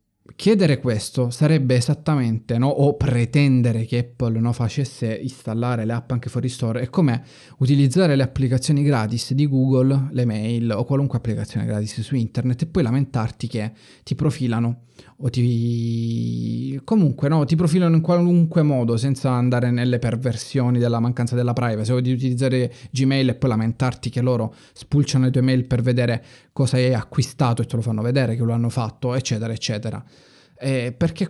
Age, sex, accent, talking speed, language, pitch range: 20-39, male, native, 165 wpm, Italian, 115-135 Hz